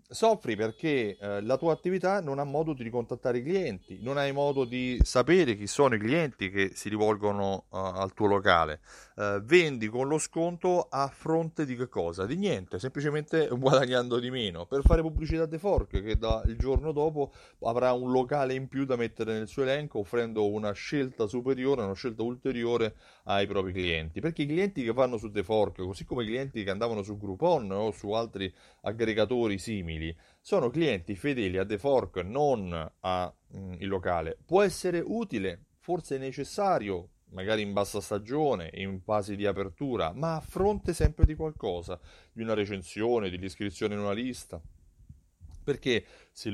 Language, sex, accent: Italian, male, native